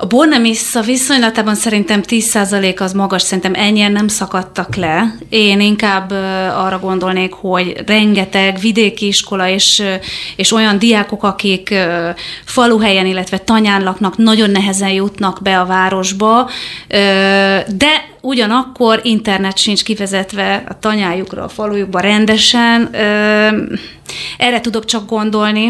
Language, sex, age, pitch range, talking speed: Hungarian, female, 30-49, 195-230 Hz, 115 wpm